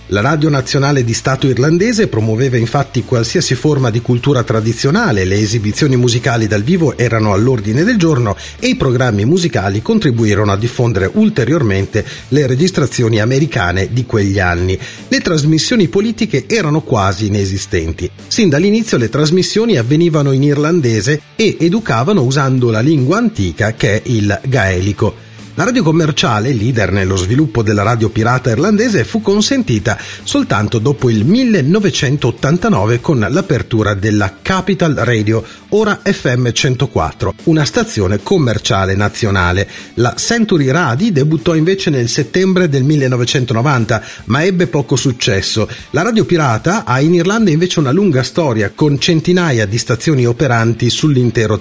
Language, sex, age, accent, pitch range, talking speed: Italian, male, 40-59, native, 110-160 Hz, 135 wpm